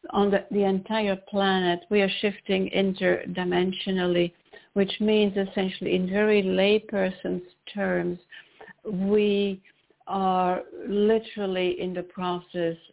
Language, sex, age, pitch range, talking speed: English, female, 60-79, 180-210 Hz, 100 wpm